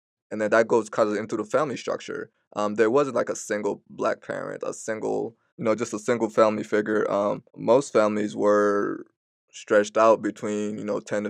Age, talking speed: 20-39, 200 wpm